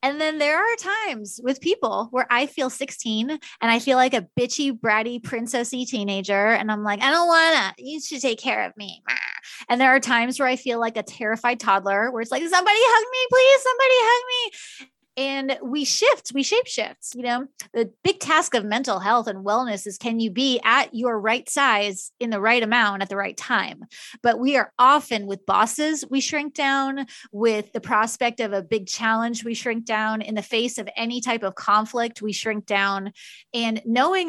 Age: 20-39